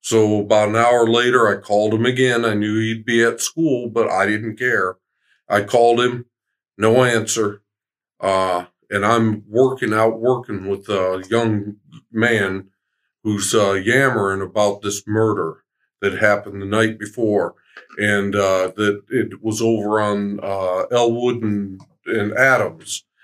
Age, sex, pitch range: 50-69, male, 100-115 Hz